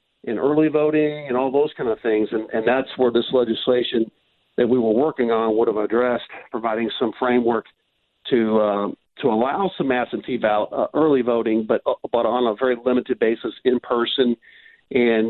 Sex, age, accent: male, 50-69, American